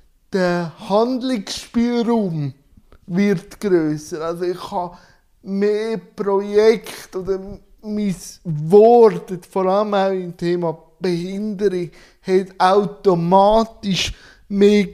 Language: German